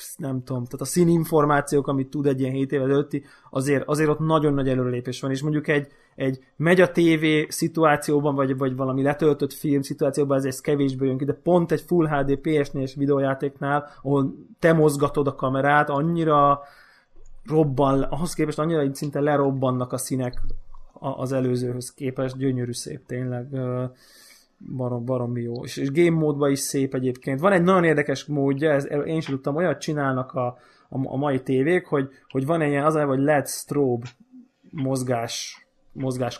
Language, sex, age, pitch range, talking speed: Hungarian, male, 20-39, 135-155 Hz, 170 wpm